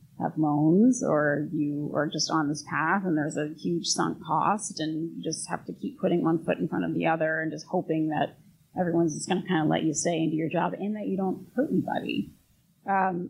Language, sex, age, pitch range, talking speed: English, female, 30-49, 160-185 Hz, 235 wpm